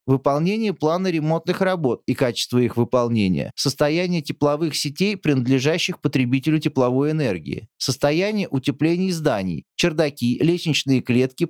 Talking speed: 110 wpm